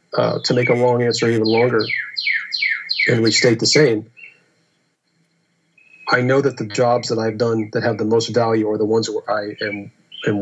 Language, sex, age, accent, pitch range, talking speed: English, male, 40-59, American, 110-130 Hz, 190 wpm